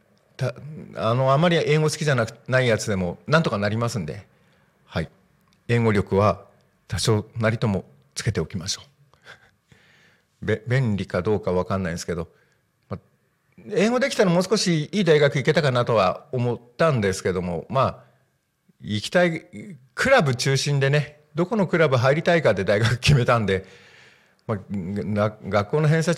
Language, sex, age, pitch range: Japanese, male, 50-69, 105-150 Hz